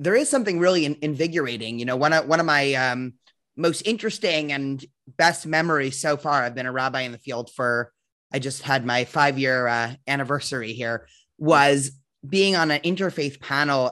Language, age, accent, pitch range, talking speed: English, 20-39, American, 130-165 Hz, 180 wpm